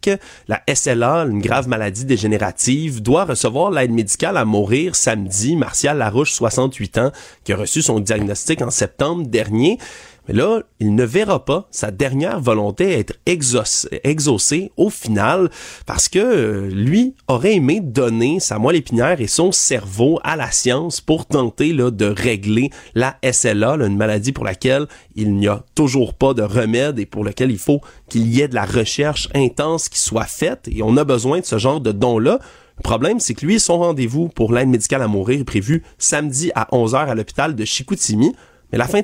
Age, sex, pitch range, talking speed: 30-49, male, 110-160 Hz, 190 wpm